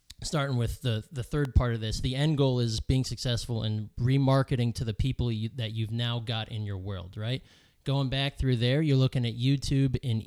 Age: 20-39